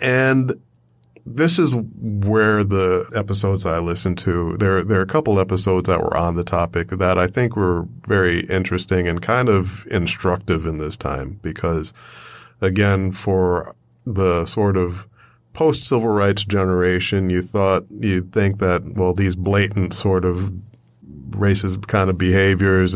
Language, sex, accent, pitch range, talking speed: English, male, American, 90-105 Hz, 145 wpm